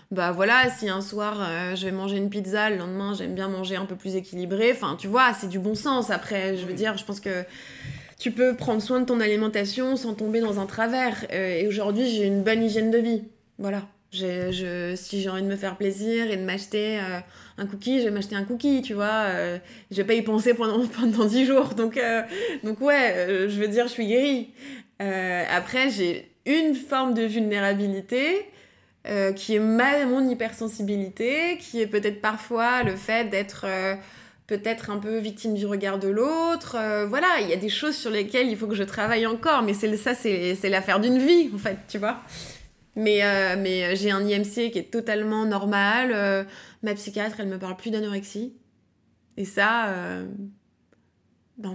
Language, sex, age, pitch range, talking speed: French, female, 20-39, 195-230 Hz, 205 wpm